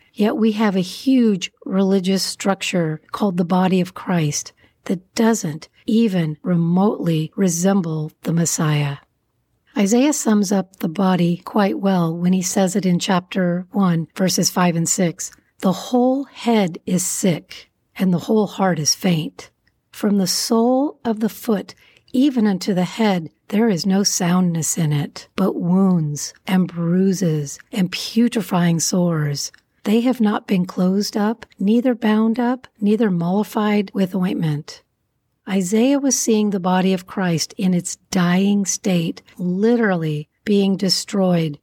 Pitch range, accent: 170-215 Hz, American